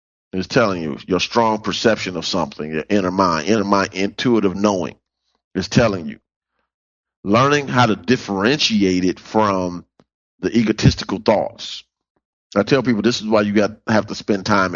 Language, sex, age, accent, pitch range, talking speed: English, male, 40-59, American, 100-130 Hz, 160 wpm